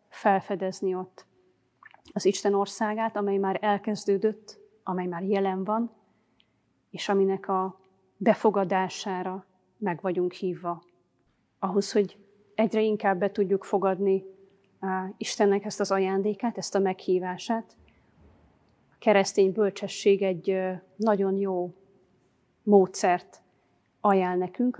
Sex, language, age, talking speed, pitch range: female, Hungarian, 30-49, 100 wpm, 185-205 Hz